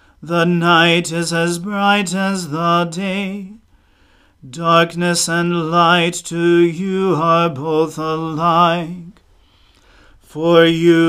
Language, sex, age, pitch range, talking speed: English, male, 40-59, 165-175 Hz, 95 wpm